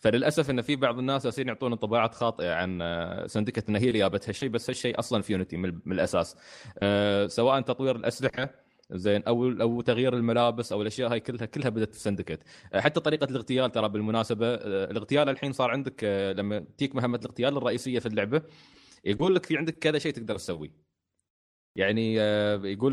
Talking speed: 165 wpm